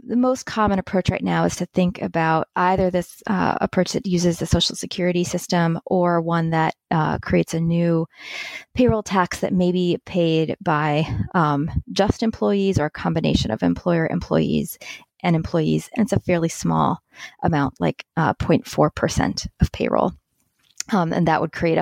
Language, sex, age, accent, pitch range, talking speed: English, female, 20-39, American, 160-200 Hz, 170 wpm